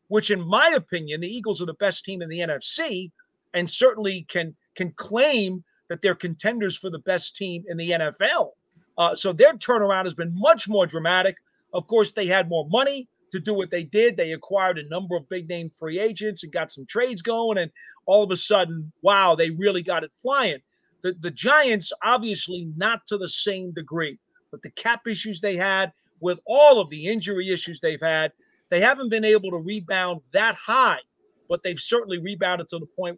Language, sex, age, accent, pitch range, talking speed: English, male, 40-59, American, 175-220 Hz, 200 wpm